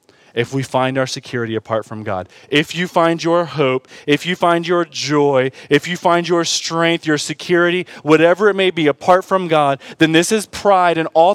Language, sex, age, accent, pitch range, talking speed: English, male, 20-39, American, 145-195 Hz, 200 wpm